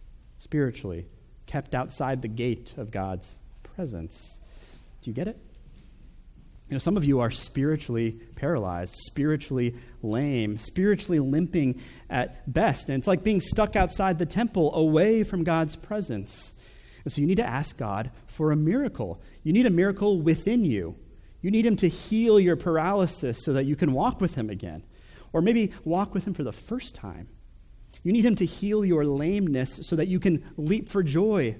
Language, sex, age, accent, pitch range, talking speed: English, male, 30-49, American, 115-180 Hz, 175 wpm